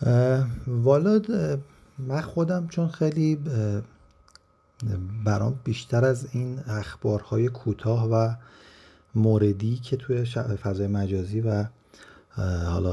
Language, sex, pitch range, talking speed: Persian, male, 100-120 Hz, 90 wpm